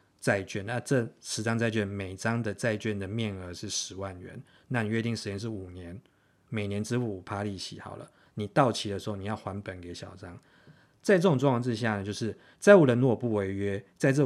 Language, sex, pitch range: Chinese, male, 100-120 Hz